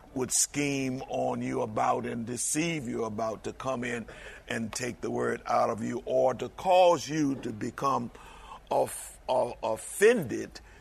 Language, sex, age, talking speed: English, male, 50-69, 145 wpm